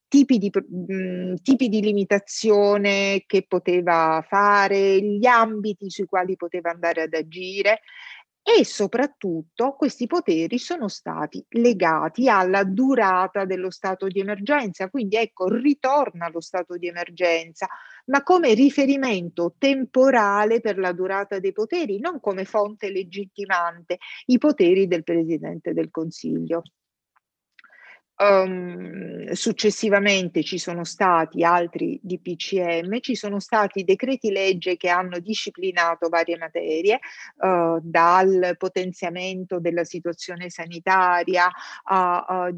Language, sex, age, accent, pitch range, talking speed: Italian, female, 40-59, native, 180-210 Hz, 110 wpm